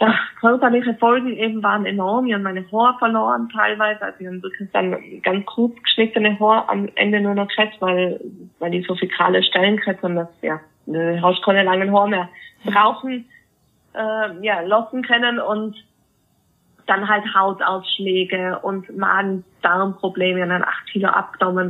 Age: 20-39